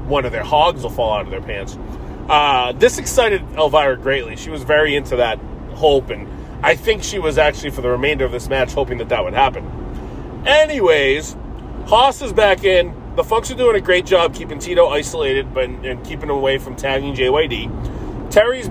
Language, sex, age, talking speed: English, male, 30-49, 195 wpm